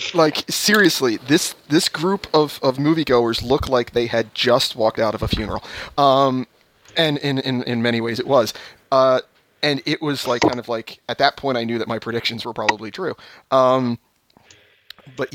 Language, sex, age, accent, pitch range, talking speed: English, male, 30-49, American, 110-140 Hz, 190 wpm